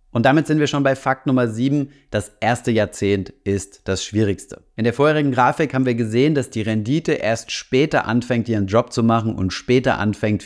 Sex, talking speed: male, 200 wpm